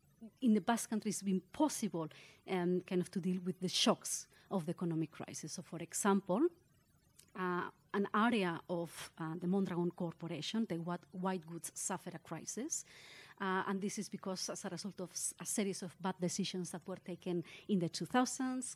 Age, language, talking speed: 30-49, English, 180 wpm